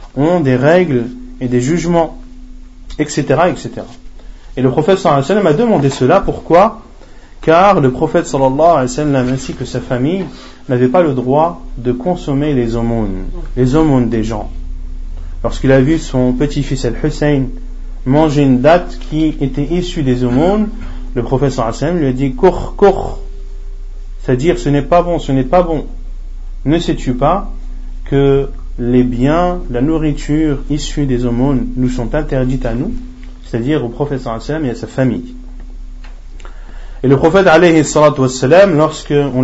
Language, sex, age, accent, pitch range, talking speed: French, male, 30-49, French, 125-155 Hz, 165 wpm